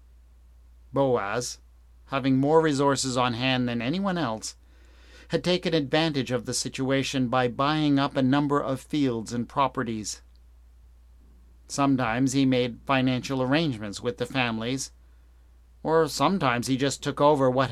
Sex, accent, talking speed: male, American, 130 wpm